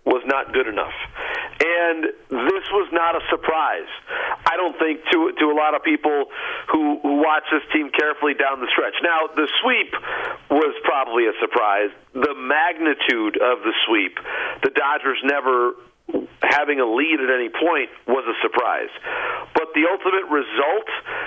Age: 40-59